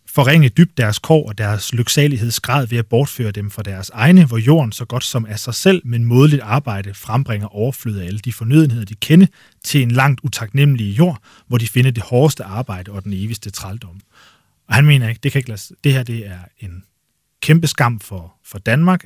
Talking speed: 190 wpm